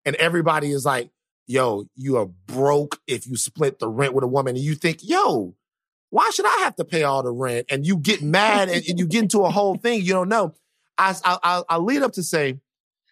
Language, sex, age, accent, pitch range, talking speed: English, male, 30-49, American, 130-175 Hz, 235 wpm